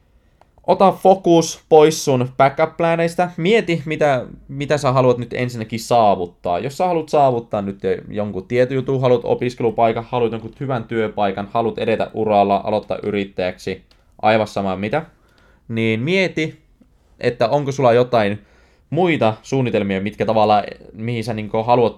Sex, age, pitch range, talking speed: male, 20-39, 95-125 Hz, 135 wpm